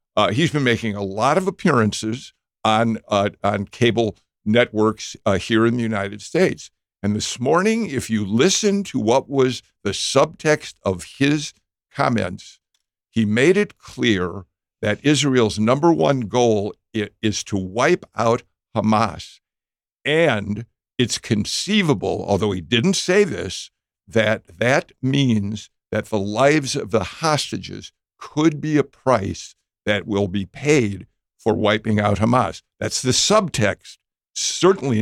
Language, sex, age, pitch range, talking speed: English, male, 60-79, 100-130 Hz, 135 wpm